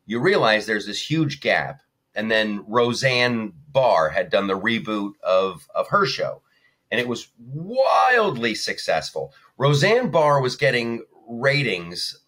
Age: 30-49